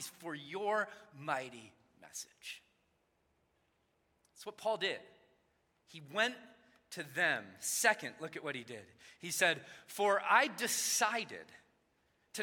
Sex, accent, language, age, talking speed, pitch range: male, American, English, 30-49, 115 wpm, 190-230 Hz